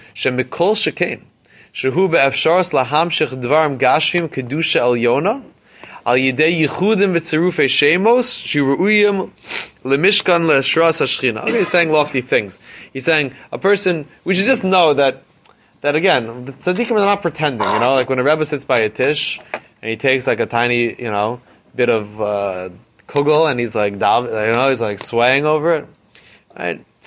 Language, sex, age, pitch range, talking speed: English, male, 20-39, 115-155 Hz, 120 wpm